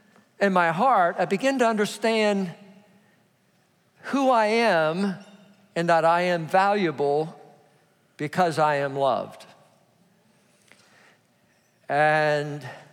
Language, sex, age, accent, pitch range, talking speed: English, male, 50-69, American, 175-230 Hz, 95 wpm